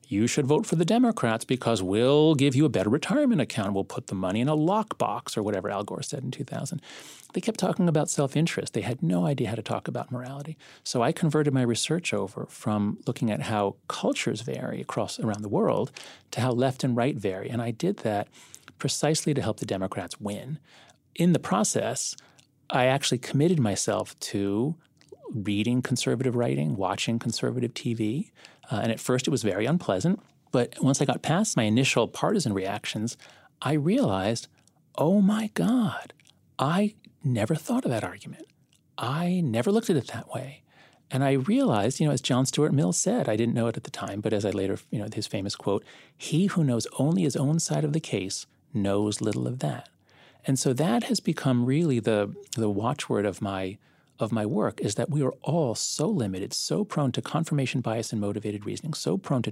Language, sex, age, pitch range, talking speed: English, male, 30-49, 110-155 Hz, 195 wpm